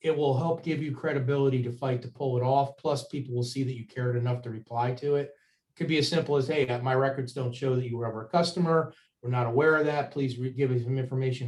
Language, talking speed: English, 265 wpm